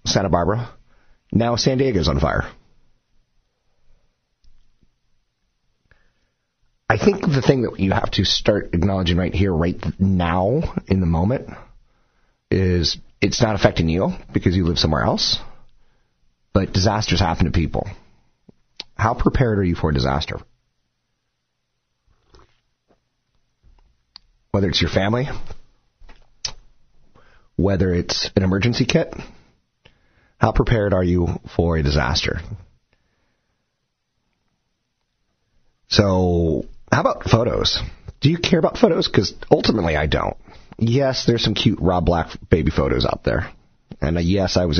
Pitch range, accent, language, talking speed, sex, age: 80-110 Hz, American, English, 120 wpm, male, 30-49